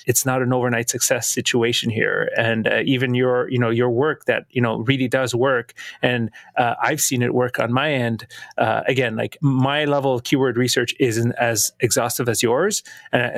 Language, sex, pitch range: English, male, 120-135 Hz